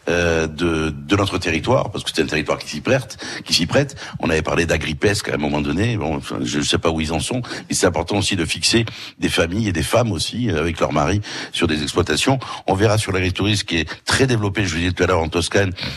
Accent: French